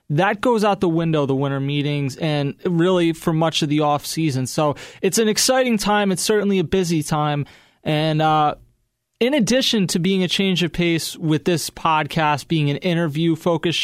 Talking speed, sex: 180 wpm, male